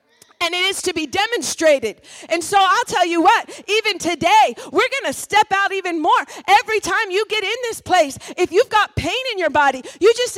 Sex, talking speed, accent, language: female, 215 wpm, American, English